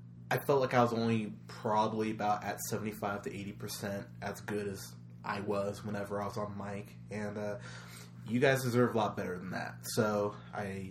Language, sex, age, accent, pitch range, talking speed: English, male, 20-39, American, 100-110 Hz, 185 wpm